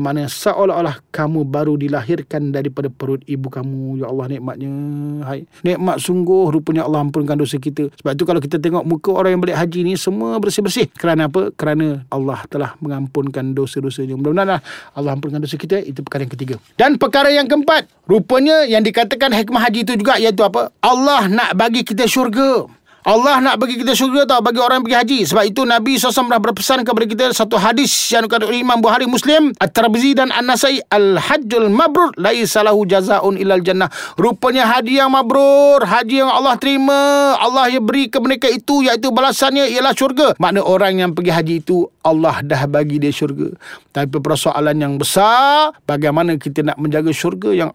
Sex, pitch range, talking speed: male, 145-245 Hz, 180 wpm